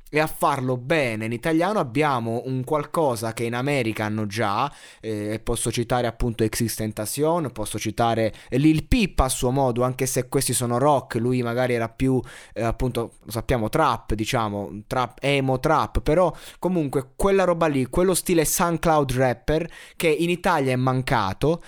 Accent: native